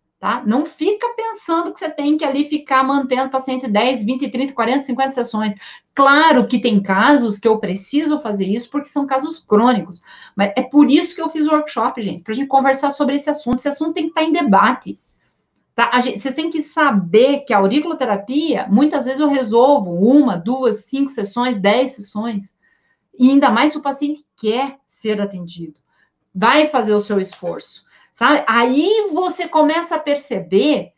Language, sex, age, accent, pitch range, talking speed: Portuguese, female, 40-59, Brazilian, 215-290 Hz, 185 wpm